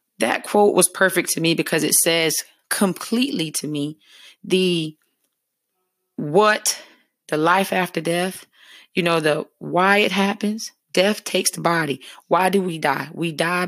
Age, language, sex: 30-49, English, female